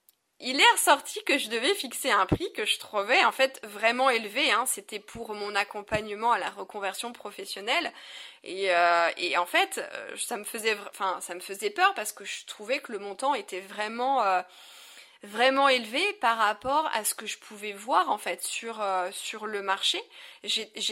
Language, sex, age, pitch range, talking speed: French, female, 20-39, 205-270 Hz, 190 wpm